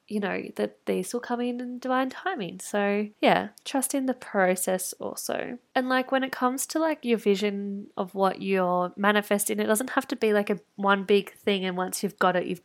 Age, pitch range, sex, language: 10-29, 185-230 Hz, female, English